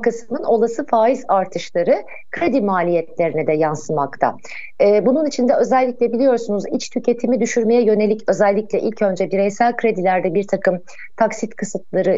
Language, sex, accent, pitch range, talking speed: Turkish, female, native, 195-250 Hz, 130 wpm